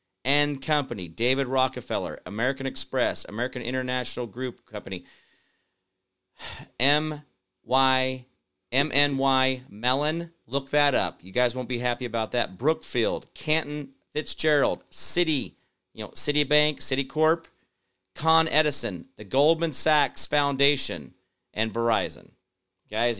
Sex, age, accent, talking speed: male, 40-59, American, 110 wpm